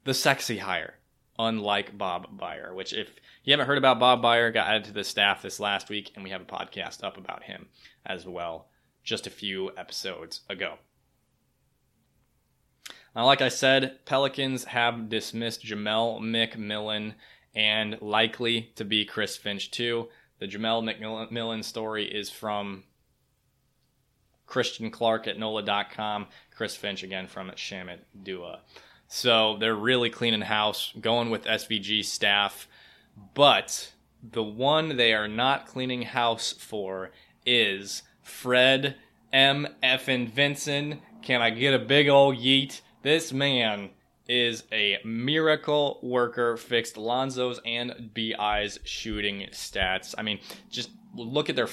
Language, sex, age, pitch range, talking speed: English, male, 20-39, 105-125 Hz, 135 wpm